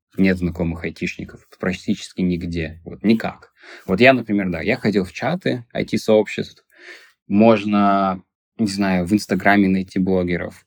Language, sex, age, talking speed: Russian, male, 20-39, 130 wpm